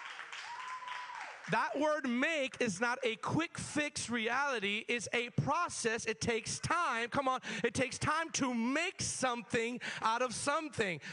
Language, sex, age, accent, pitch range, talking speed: English, male, 40-59, American, 205-275 Hz, 140 wpm